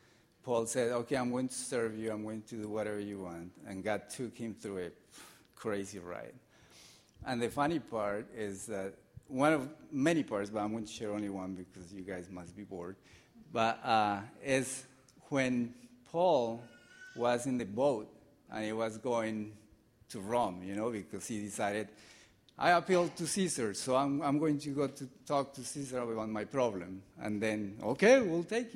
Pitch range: 105-140 Hz